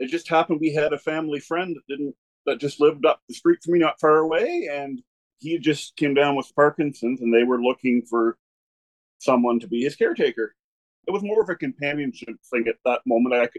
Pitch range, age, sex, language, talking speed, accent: 115-155 Hz, 40-59, male, English, 215 wpm, American